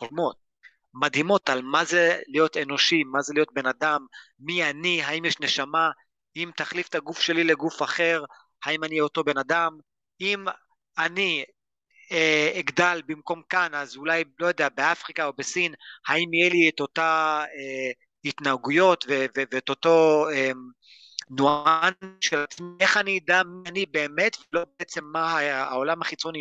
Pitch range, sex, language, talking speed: 145-175 Hz, male, Hebrew, 150 wpm